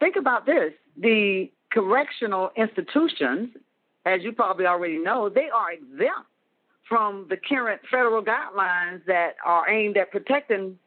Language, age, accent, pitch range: English, 50-69, American, 175-255 Hz